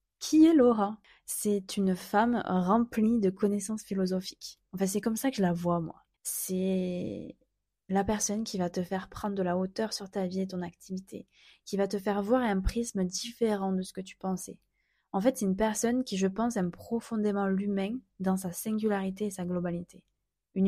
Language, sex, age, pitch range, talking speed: French, female, 20-39, 185-215 Hz, 195 wpm